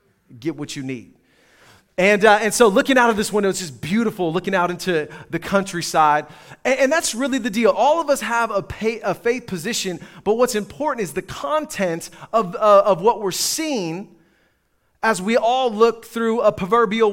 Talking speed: 195 wpm